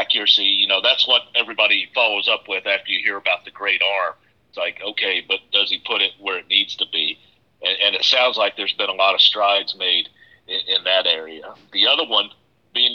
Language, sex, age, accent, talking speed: English, male, 50-69, American, 225 wpm